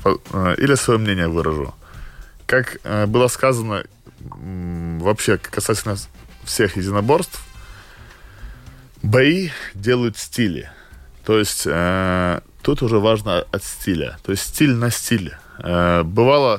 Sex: male